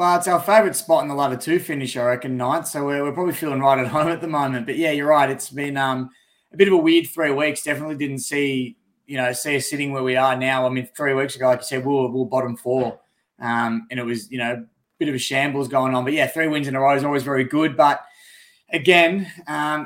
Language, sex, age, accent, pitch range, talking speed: English, male, 20-39, Australian, 125-150 Hz, 275 wpm